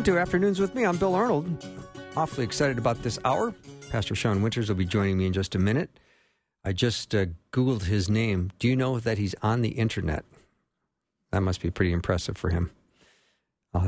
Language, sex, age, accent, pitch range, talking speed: English, male, 50-69, American, 95-125 Hz, 195 wpm